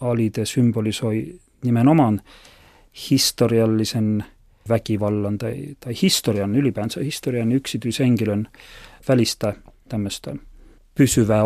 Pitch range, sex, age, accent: 105-130 Hz, male, 40-59, native